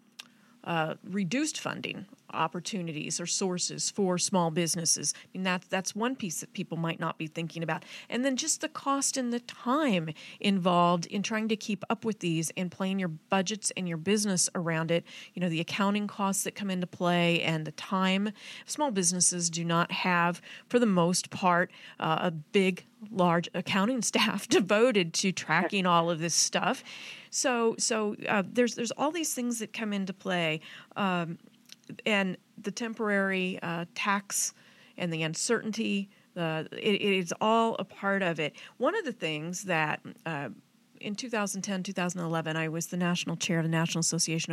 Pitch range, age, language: 170-220 Hz, 40-59, English